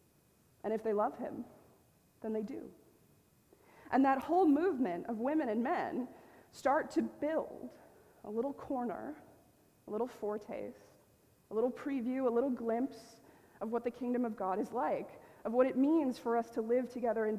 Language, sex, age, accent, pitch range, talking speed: English, female, 20-39, American, 215-255 Hz, 170 wpm